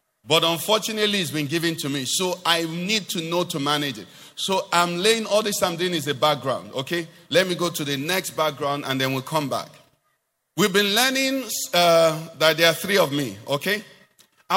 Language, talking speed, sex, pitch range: English, 200 wpm, male, 155-220 Hz